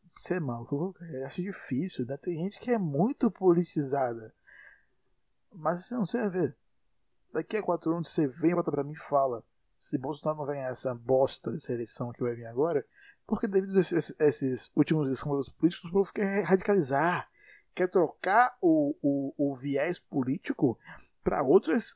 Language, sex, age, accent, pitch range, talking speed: Portuguese, male, 20-39, Brazilian, 140-190 Hz, 165 wpm